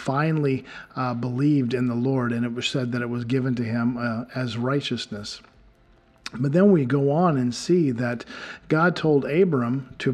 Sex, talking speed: male, 185 wpm